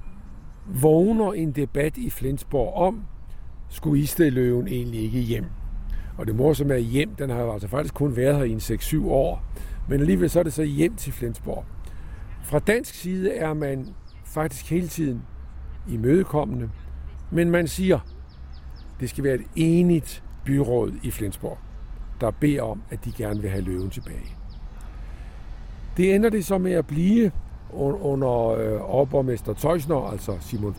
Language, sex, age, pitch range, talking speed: Danish, male, 50-69, 95-155 Hz, 160 wpm